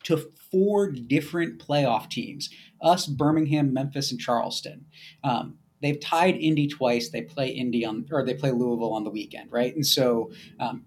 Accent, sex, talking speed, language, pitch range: American, male, 165 wpm, English, 130-170 Hz